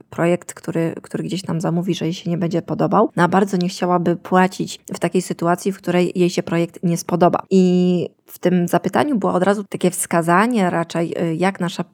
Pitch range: 170-195 Hz